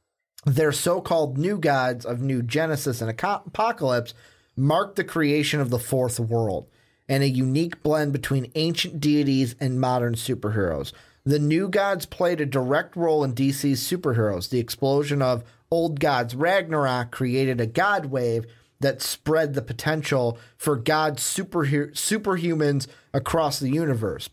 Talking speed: 140 wpm